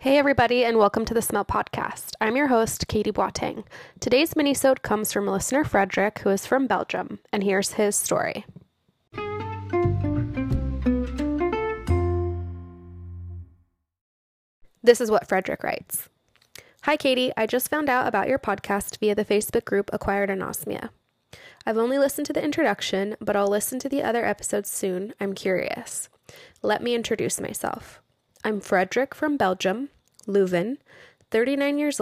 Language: English